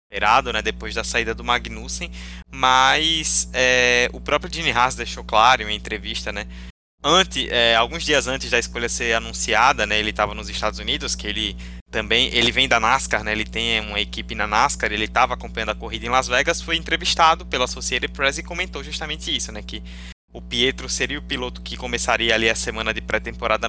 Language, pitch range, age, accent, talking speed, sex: Portuguese, 105-155 Hz, 20-39, Brazilian, 200 wpm, male